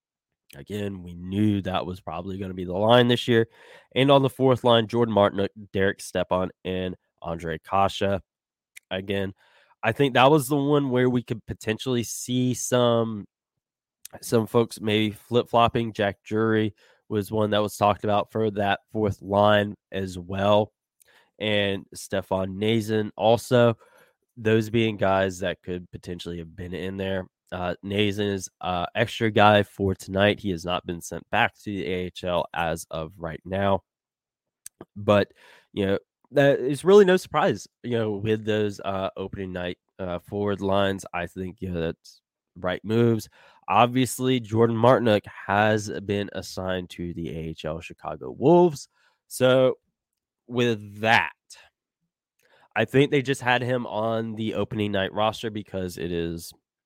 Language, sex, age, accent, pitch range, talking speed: English, male, 20-39, American, 95-115 Hz, 150 wpm